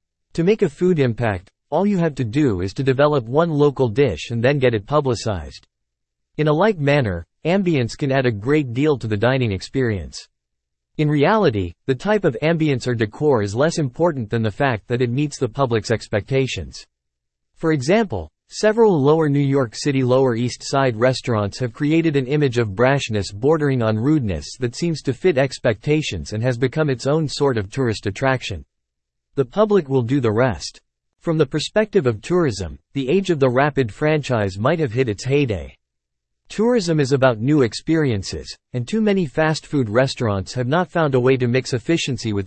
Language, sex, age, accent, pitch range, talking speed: English, male, 40-59, American, 110-150 Hz, 185 wpm